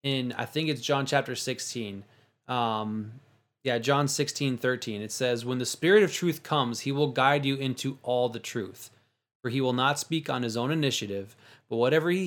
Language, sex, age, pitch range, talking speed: English, male, 20-39, 120-145 Hz, 195 wpm